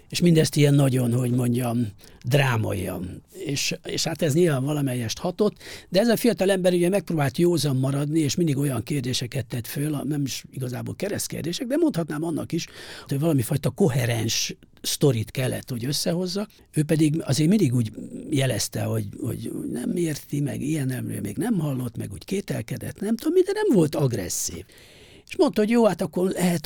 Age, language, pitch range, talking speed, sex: 60-79, Hungarian, 120-170 Hz, 170 wpm, male